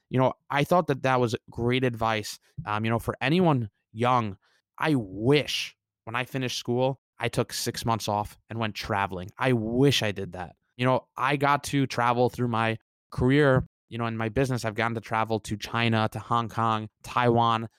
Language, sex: English, male